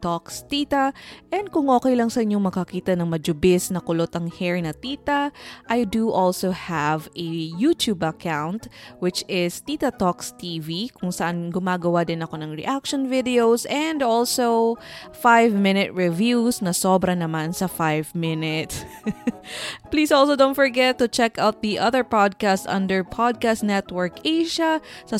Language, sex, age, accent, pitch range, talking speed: English, female, 20-39, Filipino, 175-235 Hz, 150 wpm